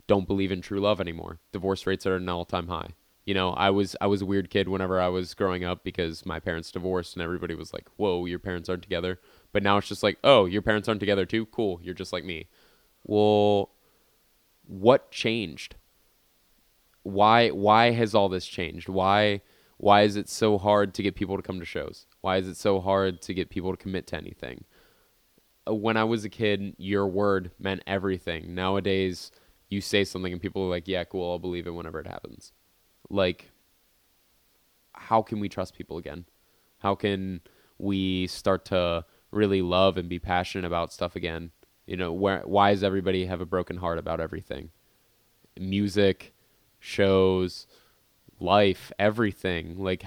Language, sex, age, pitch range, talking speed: English, male, 20-39, 90-100 Hz, 180 wpm